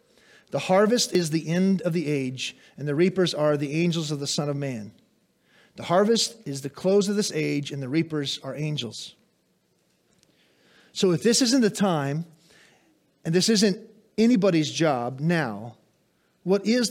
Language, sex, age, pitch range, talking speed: English, male, 40-59, 165-220 Hz, 165 wpm